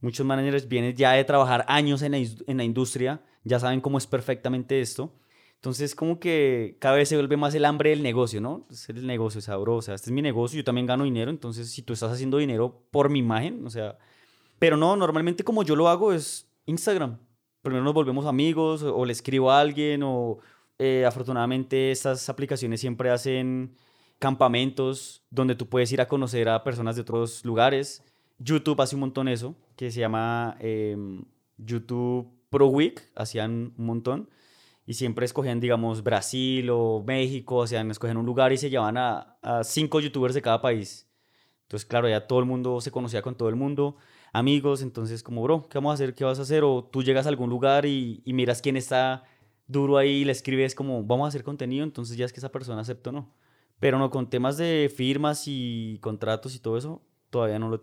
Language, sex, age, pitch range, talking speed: Spanish, male, 20-39, 120-140 Hz, 205 wpm